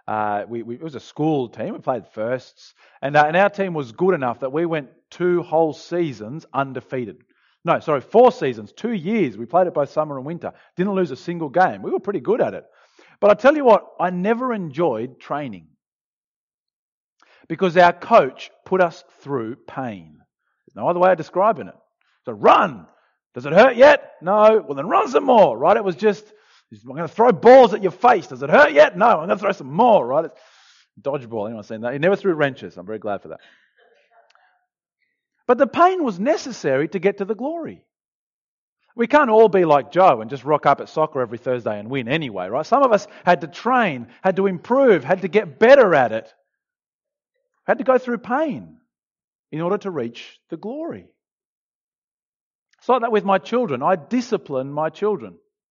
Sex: male